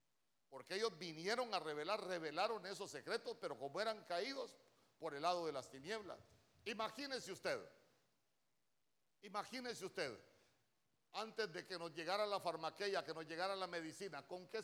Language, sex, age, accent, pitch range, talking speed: Spanish, male, 50-69, Mexican, 155-215 Hz, 150 wpm